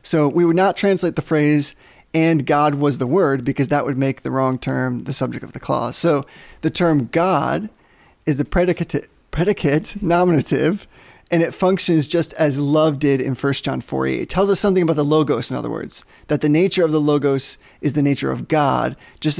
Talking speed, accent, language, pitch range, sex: 205 wpm, American, English, 145-180 Hz, male